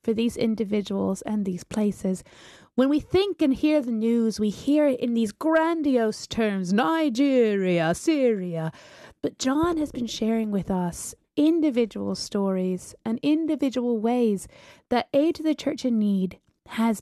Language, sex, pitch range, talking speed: English, female, 200-295 Hz, 150 wpm